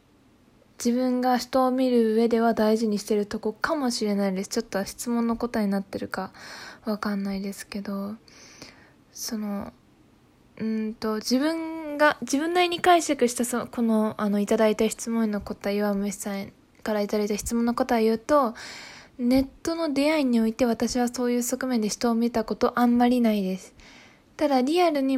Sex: female